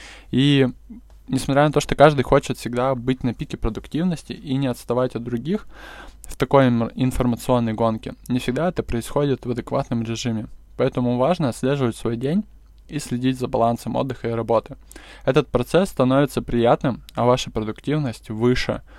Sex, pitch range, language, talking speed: male, 115-135 Hz, Russian, 150 wpm